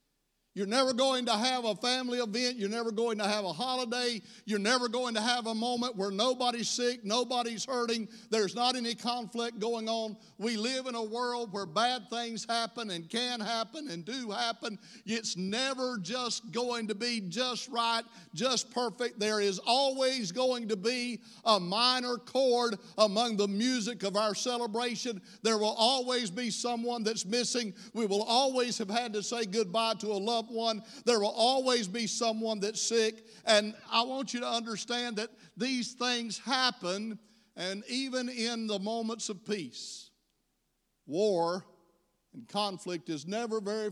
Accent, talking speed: American, 165 wpm